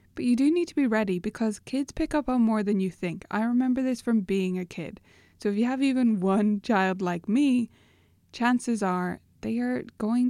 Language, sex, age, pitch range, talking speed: English, female, 20-39, 175-225 Hz, 215 wpm